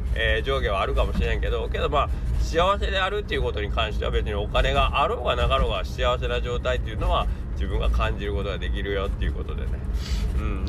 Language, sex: Japanese, male